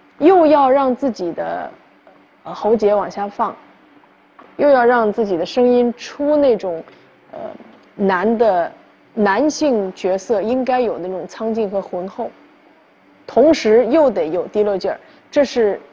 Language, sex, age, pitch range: Chinese, female, 20-39, 200-285 Hz